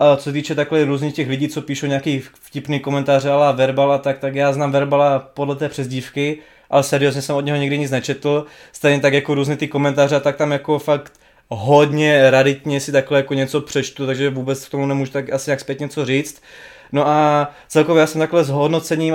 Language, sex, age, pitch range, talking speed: Czech, male, 20-39, 140-150 Hz, 215 wpm